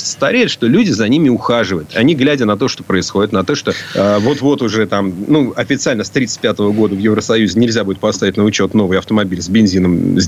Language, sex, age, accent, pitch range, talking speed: Russian, male, 40-59, native, 100-140 Hz, 210 wpm